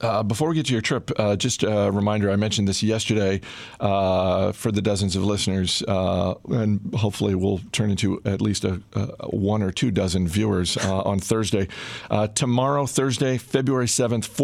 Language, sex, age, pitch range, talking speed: English, male, 50-69, 95-115 Hz, 185 wpm